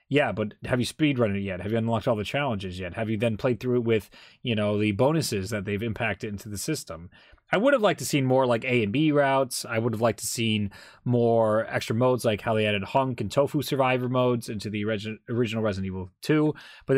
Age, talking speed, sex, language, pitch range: 20-39, 245 wpm, male, English, 110-140 Hz